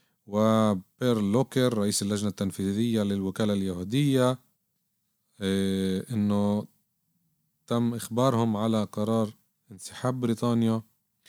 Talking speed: 75 wpm